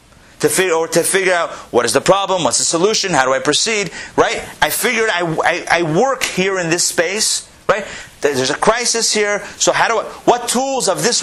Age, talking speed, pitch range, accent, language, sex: 30-49, 220 wpm, 155-220 Hz, American, English, male